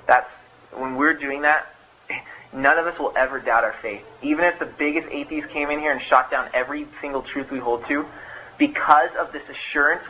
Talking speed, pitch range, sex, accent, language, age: 195 wpm, 145-210 Hz, male, American, English, 20-39